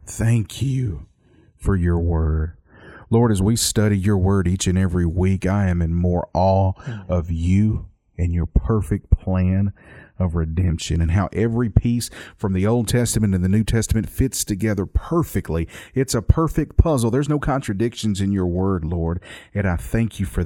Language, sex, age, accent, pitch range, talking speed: English, male, 40-59, American, 85-105 Hz, 175 wpm